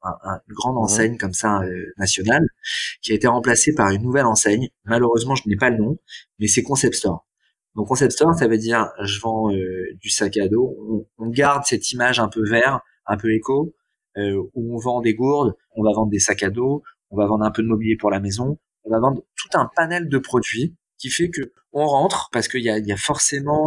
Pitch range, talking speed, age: 110-140 Hz, 235 wpm, 20-39